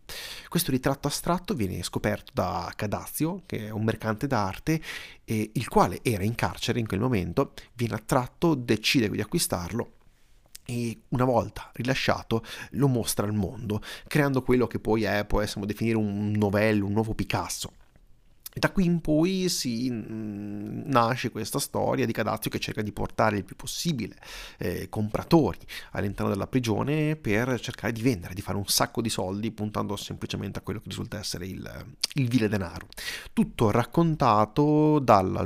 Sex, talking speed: male, 155 wpm